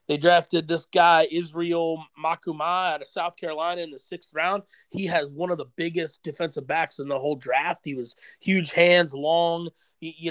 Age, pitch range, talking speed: 30-49, 150-175 Hz, 185 wpm